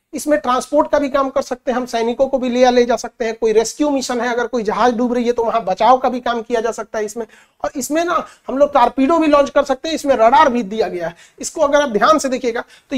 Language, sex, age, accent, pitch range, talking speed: Hindi, male, 50-69, native, 225-285 Hz, 290 wpm